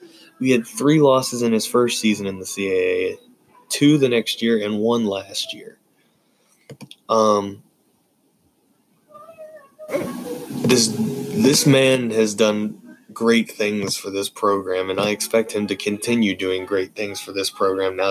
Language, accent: English, American